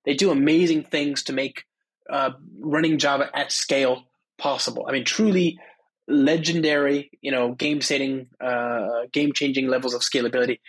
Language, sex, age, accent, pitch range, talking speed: English, male, 20-39, American, 135-165 Hz, 130 wpm